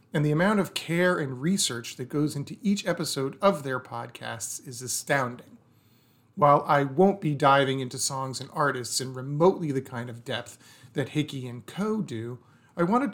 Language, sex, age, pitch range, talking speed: English, male, 40-59, 125-170 Hz, 180 wpm